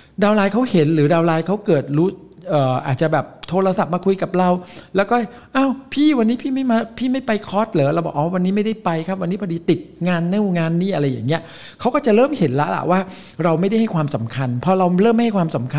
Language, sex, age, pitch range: Thai, male, 60-79, 135-185 Hz